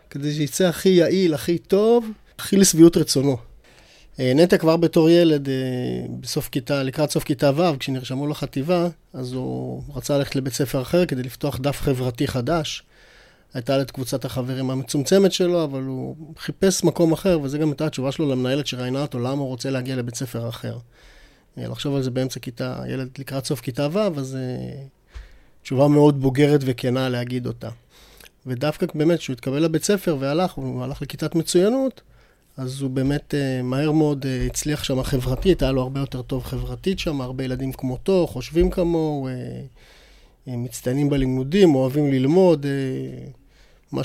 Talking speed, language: 150 wpm, Hebrew